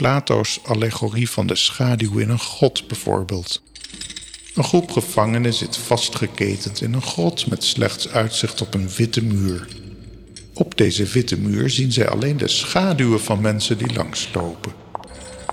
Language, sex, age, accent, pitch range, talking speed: Dutch, male, 50-69, Dutch, 100-130 Hz, 145 wpm